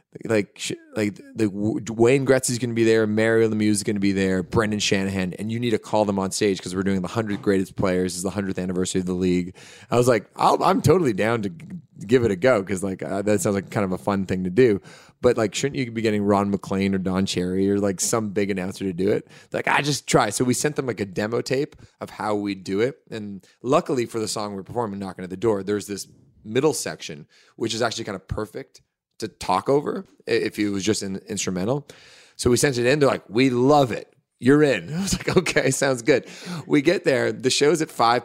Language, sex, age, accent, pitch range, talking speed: English, male, 30-49, American, 95-120 Hz, 245 wpm